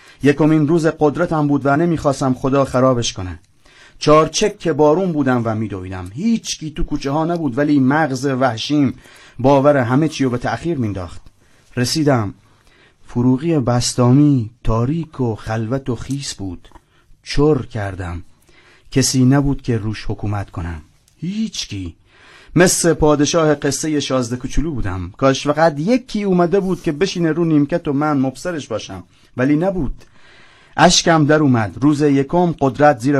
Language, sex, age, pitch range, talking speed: Persian, male, 30-49, 110-145 Hz, 145 wpm